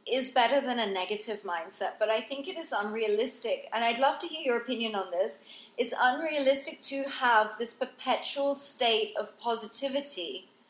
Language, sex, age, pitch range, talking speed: English, female, 30-49, 210-265 Hz, 170 wpm